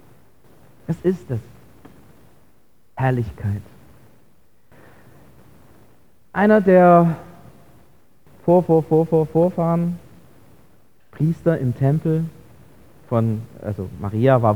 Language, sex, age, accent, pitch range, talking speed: German, male, 40-59, German, 140-230 Hz, 55 wpm